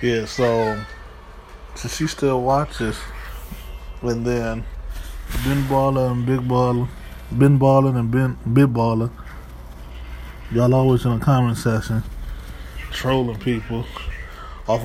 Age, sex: 20-39, male